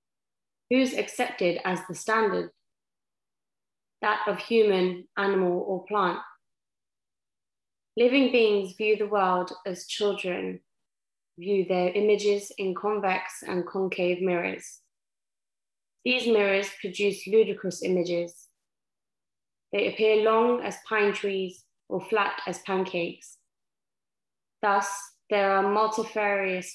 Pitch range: 185-215 Hz